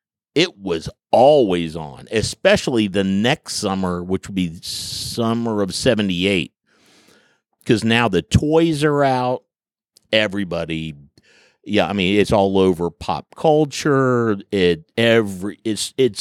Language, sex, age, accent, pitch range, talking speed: English, male, 50-69, American, 90-115 Hz, 120 wpm